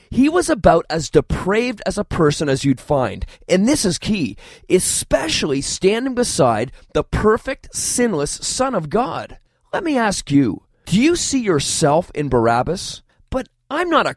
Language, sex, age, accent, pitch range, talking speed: English, male, 30-49, American, 150-240 Hz, 160 wpm